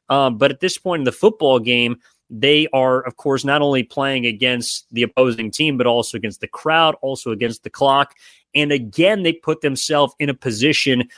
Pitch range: 120-145 Hz